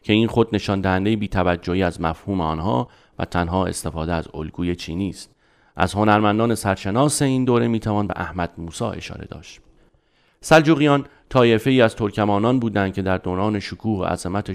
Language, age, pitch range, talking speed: Persian, 30-49, 90-110 Hz, 160 wpm